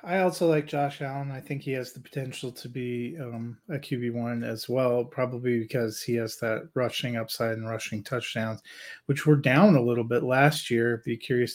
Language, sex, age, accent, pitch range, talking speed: English, male, 30-49, American, 120-140 Hz, 205 wpm